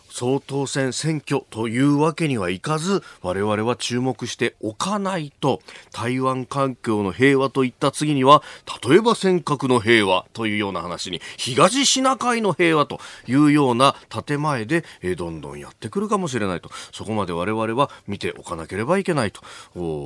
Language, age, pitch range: Japanese, 40-59, 105-155 Hz